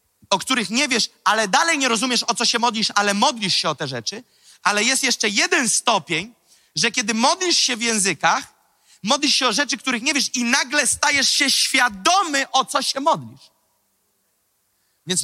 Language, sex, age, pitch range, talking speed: Polish, male, 30-49, 195-285 Hz, 180 wpm